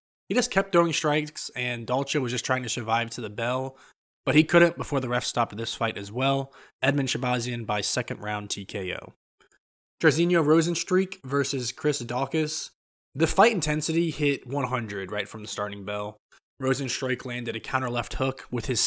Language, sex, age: English, male, 20-39